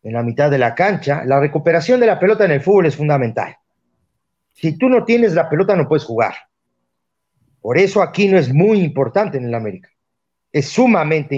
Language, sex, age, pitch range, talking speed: Spanish, male, 50-69, 130-170 Hz, 195 wpm